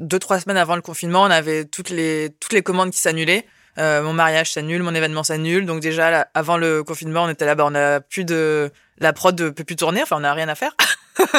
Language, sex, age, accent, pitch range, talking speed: French, female, 20-39, French, 155-185 Hz, 250 wpm